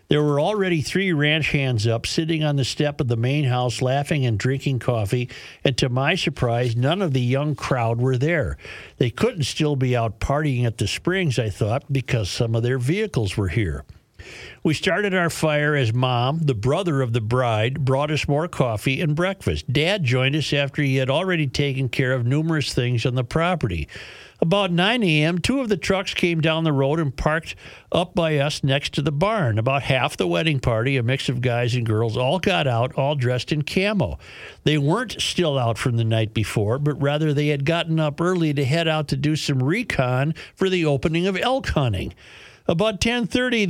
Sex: male